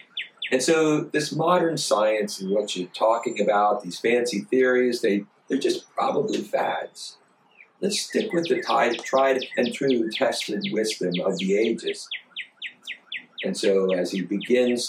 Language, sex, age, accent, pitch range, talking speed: English, male, 50-69, American, 105-150 Hz, 135 wpm